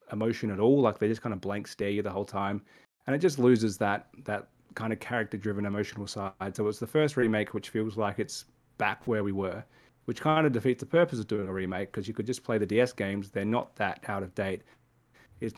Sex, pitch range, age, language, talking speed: male, 105-125 Hz, 20-39, English, 245 wpm